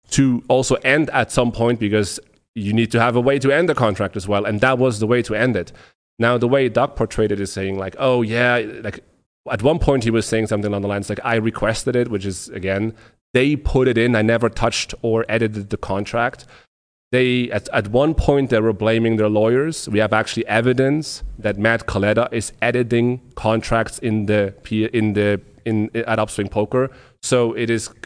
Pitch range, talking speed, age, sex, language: 105-125 Hz, 210 wpm, 30-49, male, English